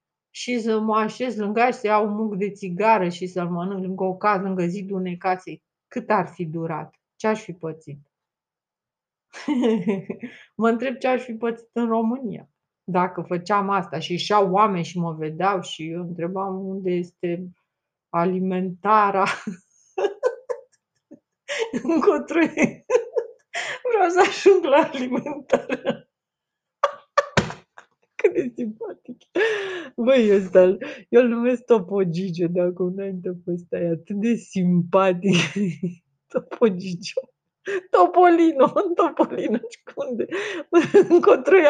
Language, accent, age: Romanian, native, 30-49